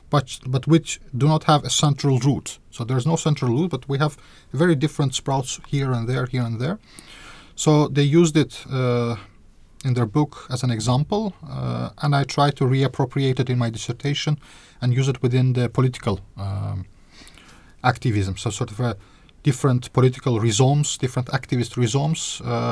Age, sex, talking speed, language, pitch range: 30-49, male, 175 wpm, Swedish, 105-135 Hz